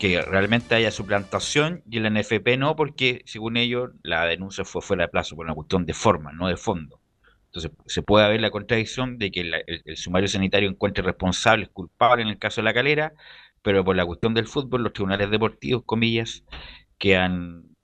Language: Spanish